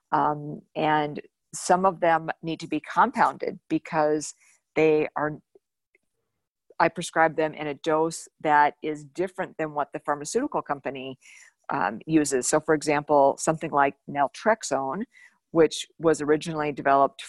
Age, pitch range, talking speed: 50-69, 145-170 Hz, 130 wpm